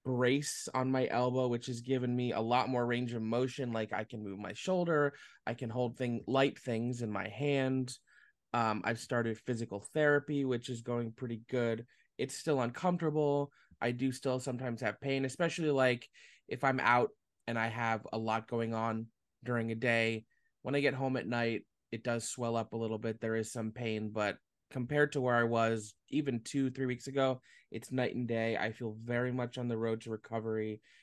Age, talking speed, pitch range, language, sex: 20-39, 200 wpm, 115-130 Hz, English, male